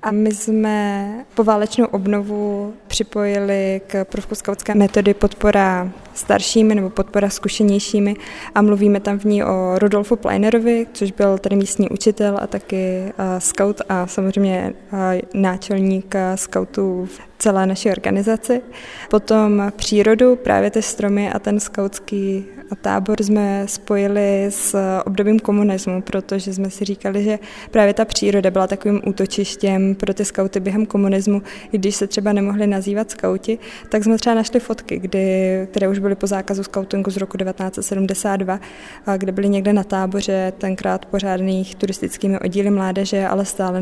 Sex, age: female, 20-39